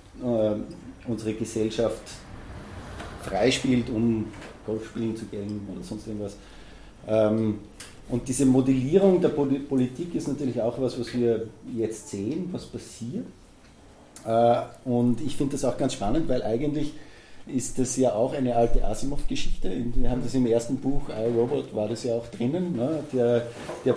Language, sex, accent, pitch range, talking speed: German, male, Austrian, 110-130 Hz, 140 wpm